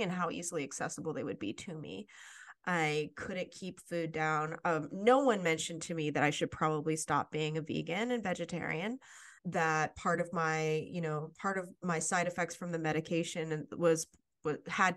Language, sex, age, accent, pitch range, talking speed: English, female, 30-49, American, 155-180 Hz, 185 wpm